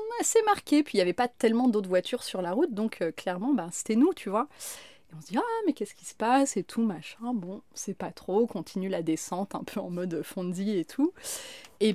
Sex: female